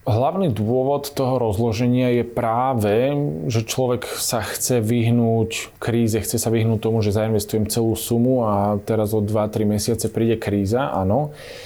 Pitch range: 105-120 Hz